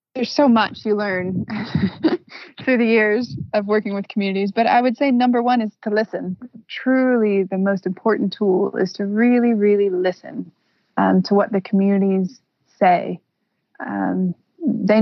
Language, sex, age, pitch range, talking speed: English, female, 20-39, 190-230 Hz, 155 wpm